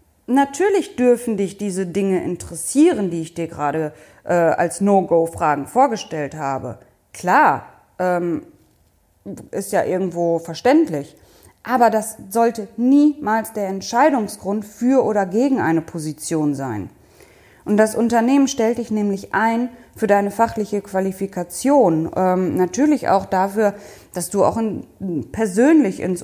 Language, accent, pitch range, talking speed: German, German, 175-235 Hz, 120 wpm